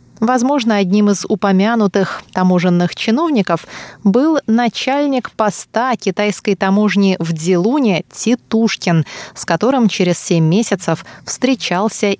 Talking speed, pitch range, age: 100 wpm, 170-230 Hz, 20-39